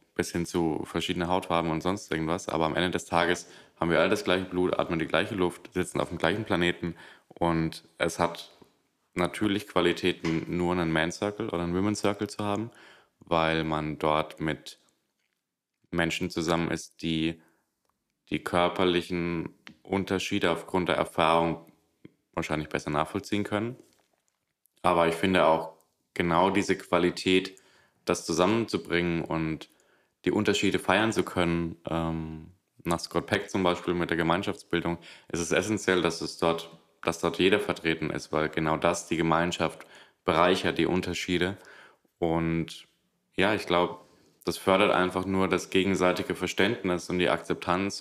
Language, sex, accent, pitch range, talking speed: German, male, German, 80-90 Hz, 140 wpm